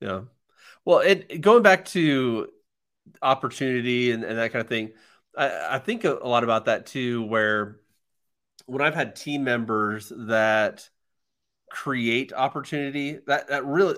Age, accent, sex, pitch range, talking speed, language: 30-49, American, male, 105-120 Hz, 140 wpm, English